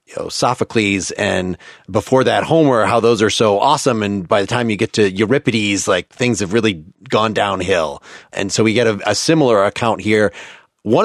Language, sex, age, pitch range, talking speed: English, male, 30-49, 105-130 Hz, 195 wpm